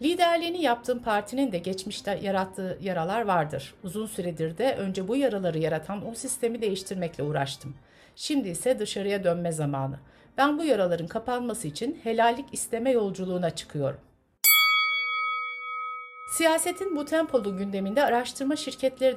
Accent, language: native, Turkish